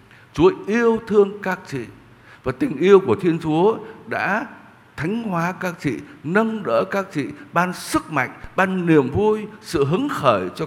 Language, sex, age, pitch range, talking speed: Vietnamese, male, 60-79, 120-185 Hz, 170 wpm